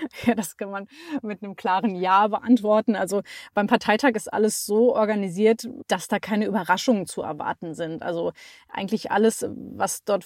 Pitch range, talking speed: 195-230 Hz, 165 wpm